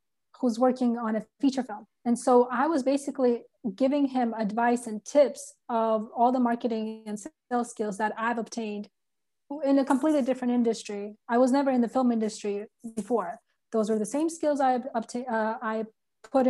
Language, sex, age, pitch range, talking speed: English, female, 20-39, 215-250 Hz, 170 wpm